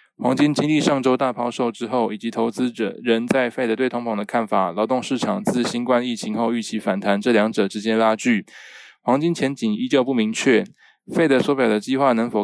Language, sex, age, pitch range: Chinese, male, 20-39, 110-130 Hz